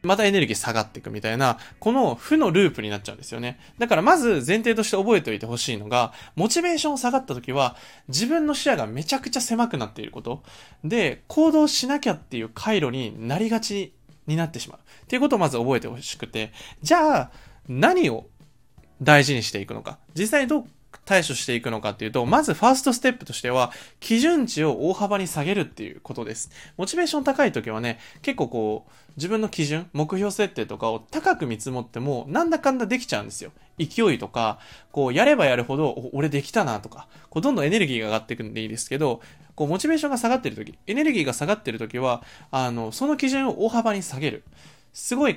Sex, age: male, 20-39